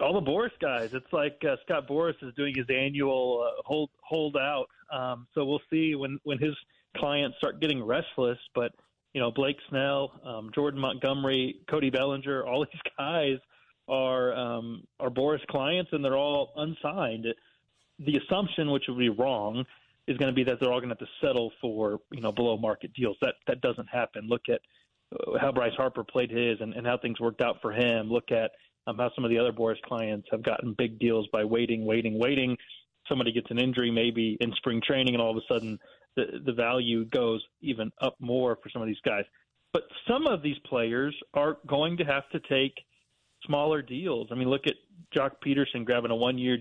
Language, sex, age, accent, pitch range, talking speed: English, male, 30-49, American, 115-140 Hz, 205 wpm